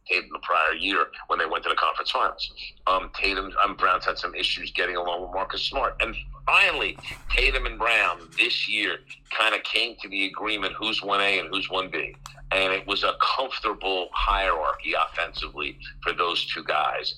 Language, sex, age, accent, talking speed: English, male, 50-69, American, 180 wpm